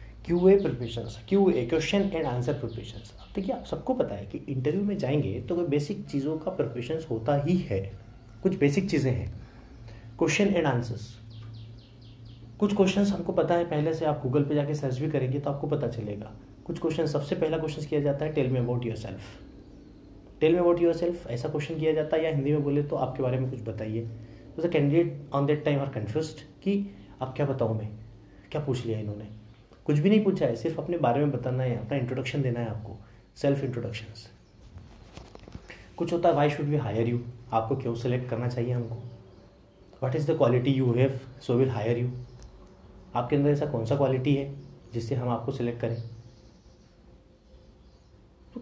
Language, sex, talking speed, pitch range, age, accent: Hindi, male, 185 wpm, 115-155 Hz, 30-49, native